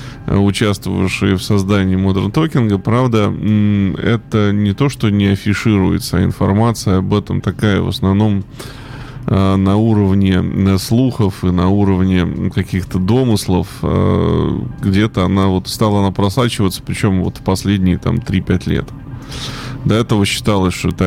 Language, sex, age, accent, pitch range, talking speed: Russian, male, 20-39, native, 95-120 Hz, 125 wpm